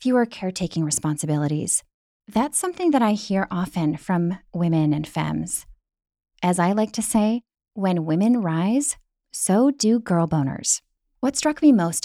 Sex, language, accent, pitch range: female, English, American, 165-230 Hz